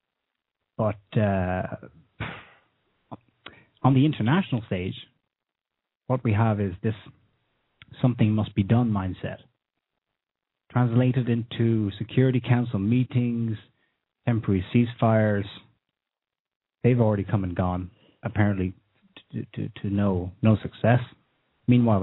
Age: 30-49